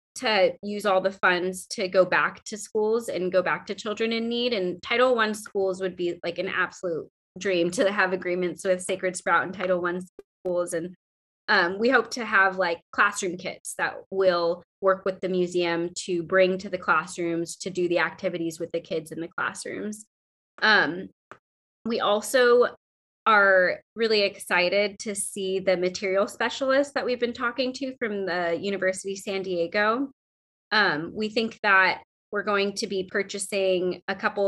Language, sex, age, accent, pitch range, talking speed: English, female, 20-39, American, 180-210 Hz, 175 wpm